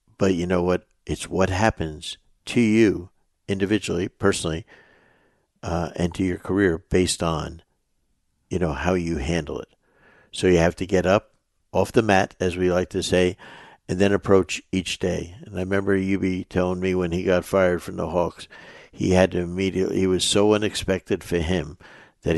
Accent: American